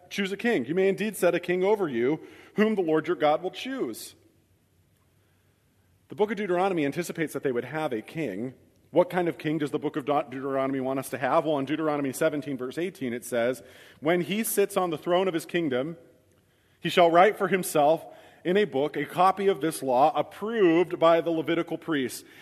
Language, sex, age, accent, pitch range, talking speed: English, male, 40-59, American, 135-175 Hz, 205 wpm